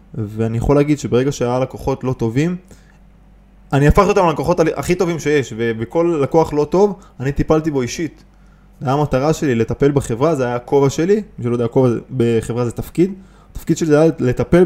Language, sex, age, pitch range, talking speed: Hebrew, male, 20-39, 120-170 Hz, 180 wpm